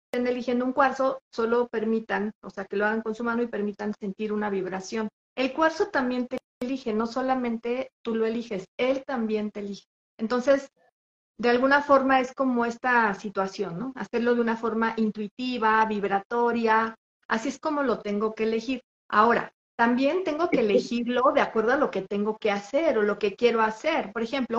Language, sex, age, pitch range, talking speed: Spanish, female, 40-59, 215-265 Hz, 185 wpm